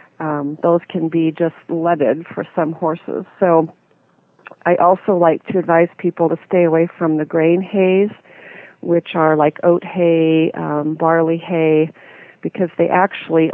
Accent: American